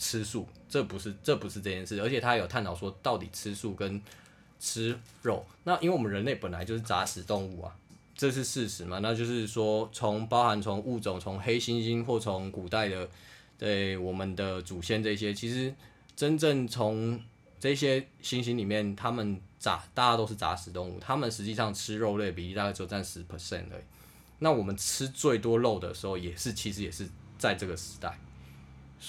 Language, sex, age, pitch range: Chinese, male, 20-39, 95-115 Hz